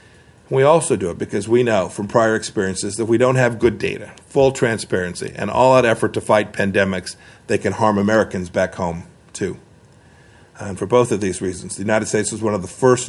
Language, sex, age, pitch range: English, male, 50-69, 100-115 Hz